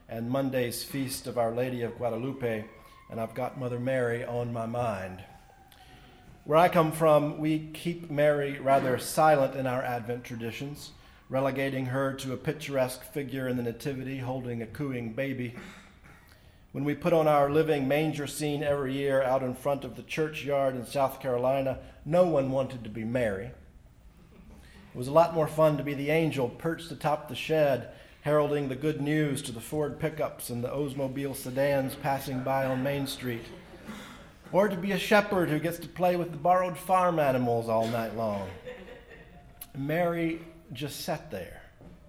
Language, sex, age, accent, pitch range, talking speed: English, male, 40-59, American, 120-150 Hz, 170 wpm